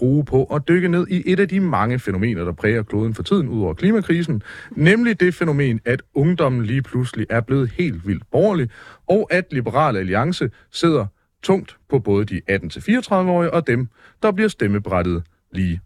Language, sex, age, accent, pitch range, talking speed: Danish, male, 40-59, native, 110-165 Hz, 180 wpm